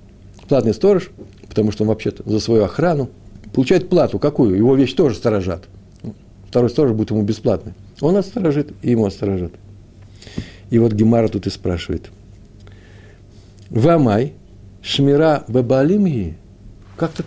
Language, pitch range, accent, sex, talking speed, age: Russian, 100-135 Hz, native, male, 125 wpm, 60-79